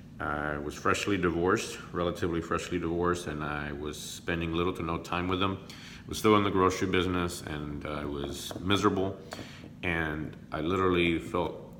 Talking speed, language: 170 wpm, English